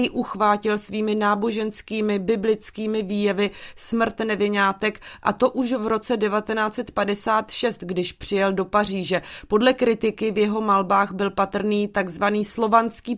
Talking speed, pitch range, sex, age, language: 120 wpm, 205-230 Hz, female, 30-49, Czech